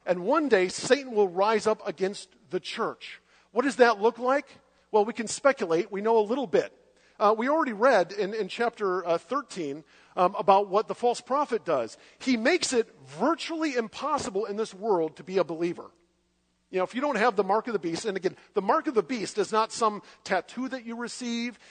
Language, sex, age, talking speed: English, male, 50-69, 215 wpm